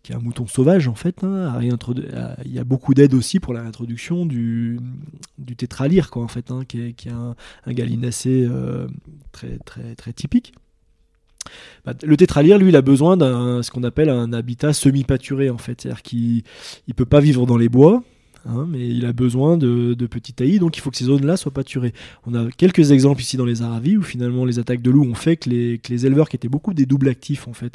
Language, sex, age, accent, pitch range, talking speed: French, male, 20-39, French, 120-145 Hz, 235 wpm